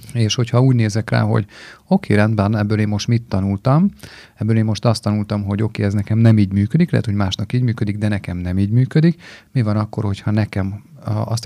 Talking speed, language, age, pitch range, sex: 225 wpm, Hungarian, 30-49, 105-120 Hz, male